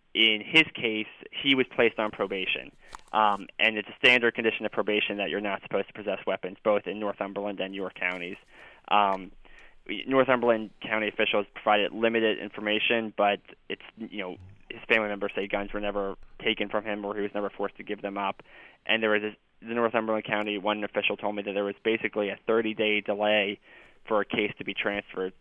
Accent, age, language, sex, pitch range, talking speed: American, 10-29, English, male, 95-110 Hz, 195 wpm